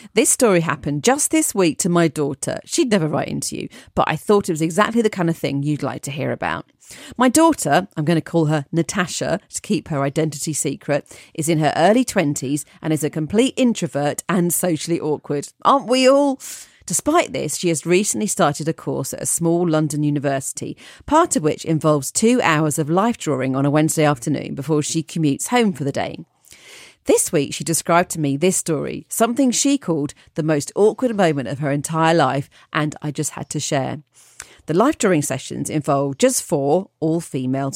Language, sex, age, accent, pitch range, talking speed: English, female, 40-59, British, 145-190 Hz, 195 wpm